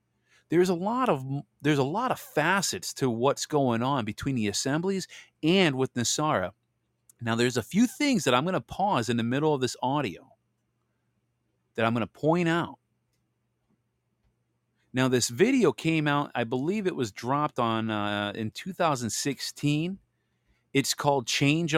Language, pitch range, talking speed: English, 110-145 Hz, 160 wpm